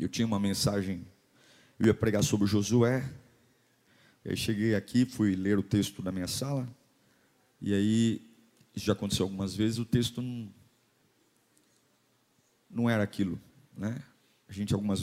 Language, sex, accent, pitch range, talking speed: Portuguese, male, Brazilian, 100-120 Hz, 145 wpm